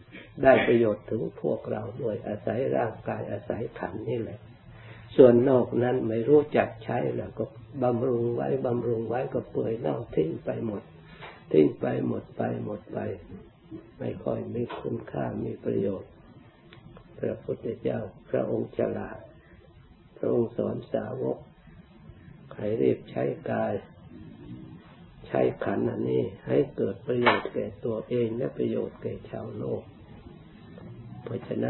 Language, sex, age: Thai, male, 60-79